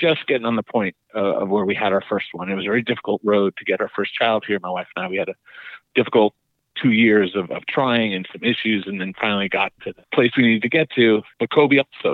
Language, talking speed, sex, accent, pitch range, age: English, 275 wpm, male, American, 105-125 Hz, 40-59